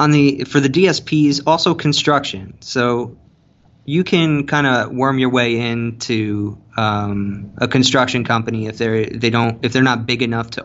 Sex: male